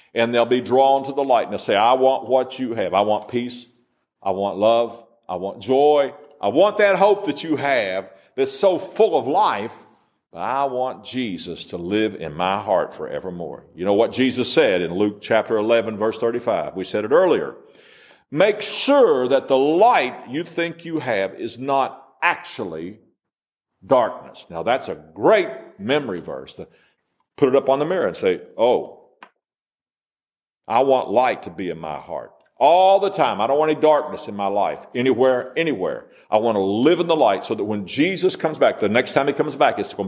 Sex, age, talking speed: male, 50-69, 195 wpm